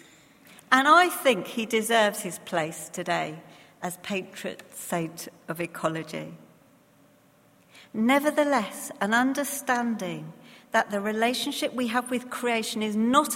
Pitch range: 205-270 Hz